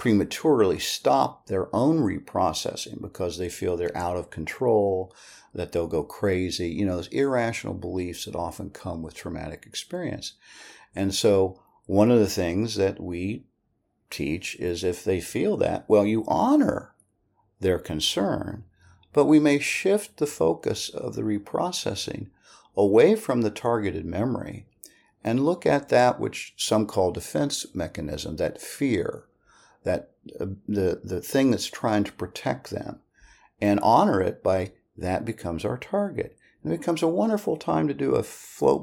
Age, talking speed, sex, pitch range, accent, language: 50-69, 155 wpm, male, 90-125 Hz, American, English